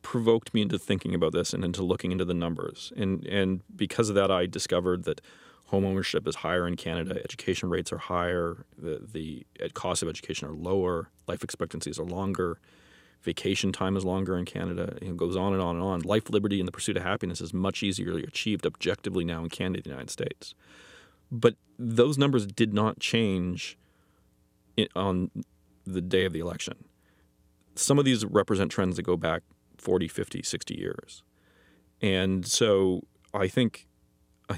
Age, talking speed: 30-49, 175 wpm